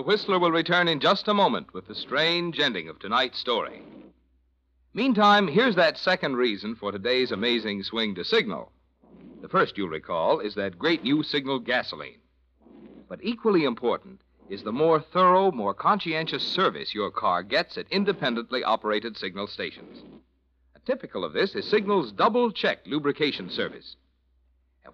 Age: 60-79